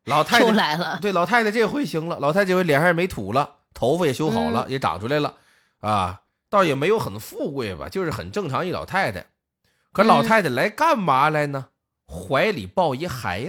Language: Chinese